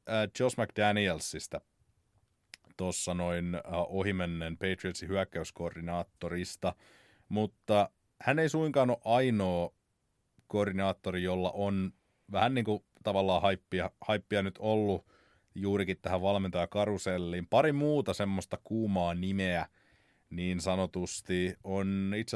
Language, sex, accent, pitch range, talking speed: Finnish, male, native, 90-110 Hz, 100 wpm